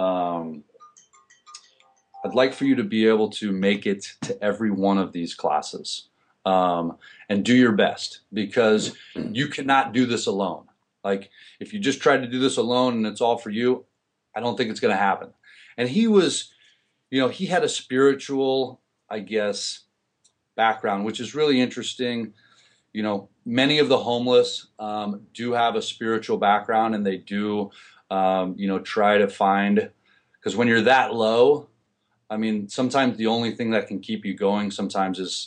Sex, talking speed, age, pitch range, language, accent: male, 175 wpm, 30-49, 100-125 Hz, English, American